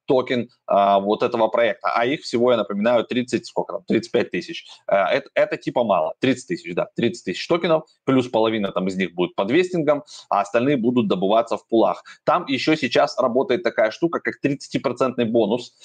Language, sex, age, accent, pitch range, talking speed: Russian, male, 20-39, native, 115-150 Hz, 190 wpm